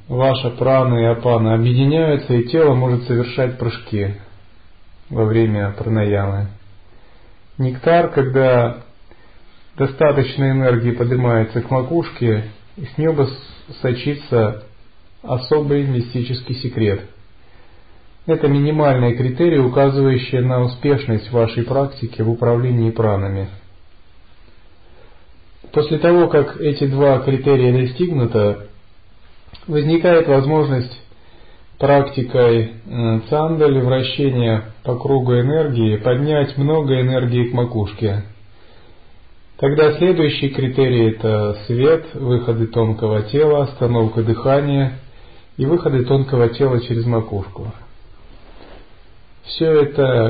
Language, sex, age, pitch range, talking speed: Russian, male, 40-59, 105-140 Hz, 90 wpm